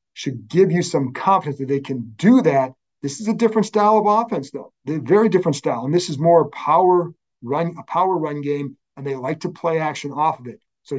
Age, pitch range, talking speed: 40-59, 135-170 Hz, 230 wpm